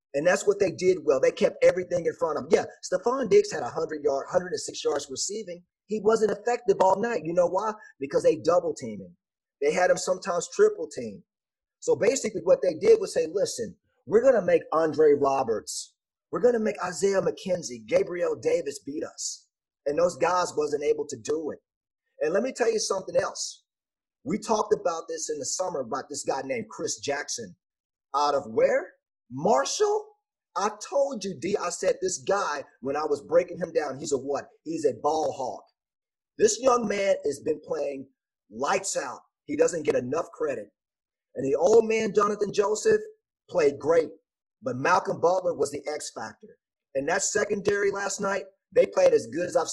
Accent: American